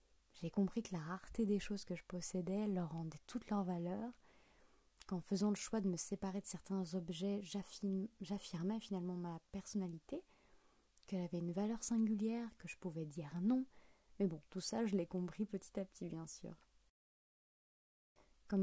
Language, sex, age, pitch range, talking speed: French, female, 20-39, 180-220 Hz, 170 wpm